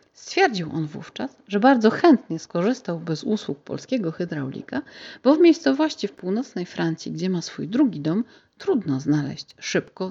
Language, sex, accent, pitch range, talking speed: Polish, female, native, 165-215 Hz, 150 wpm